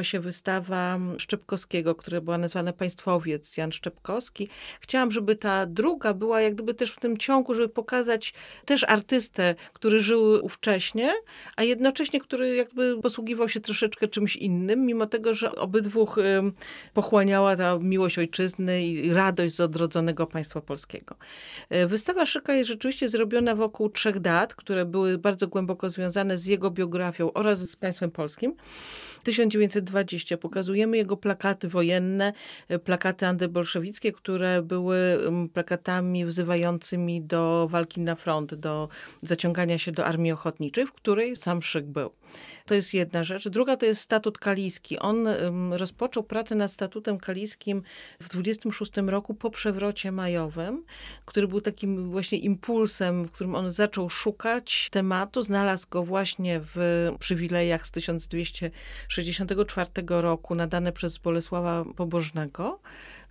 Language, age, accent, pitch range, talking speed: Polish, 40-59, native, 175-215 Hz, 135 wpm